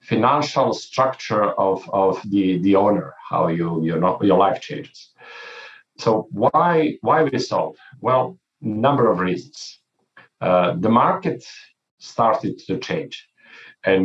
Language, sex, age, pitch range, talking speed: English, male, 50-69, 95-130 Hz, 125 wpm